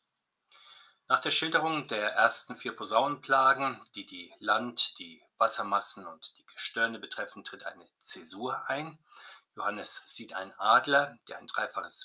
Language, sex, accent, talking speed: German, male, German, 135 wpm